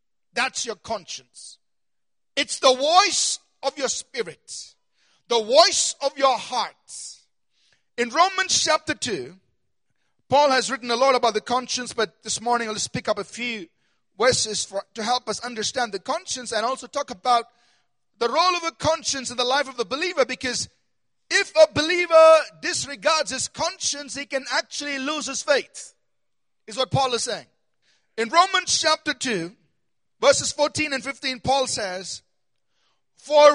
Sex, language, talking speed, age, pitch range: male, English, 155 wpm, 40-59, 240-315 Hz